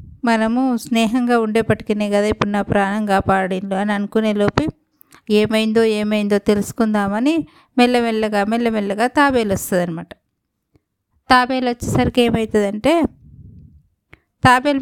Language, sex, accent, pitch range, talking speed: Telugu, female, native, 205-250 Hz, 85 wpm